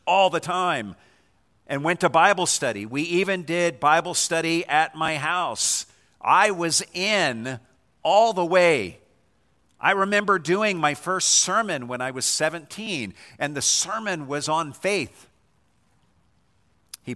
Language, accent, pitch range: English, American, 110-150 Hz